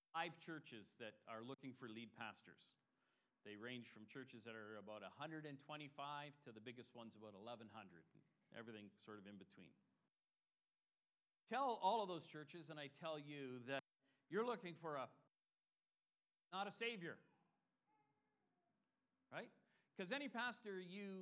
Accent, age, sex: American, 40-59, male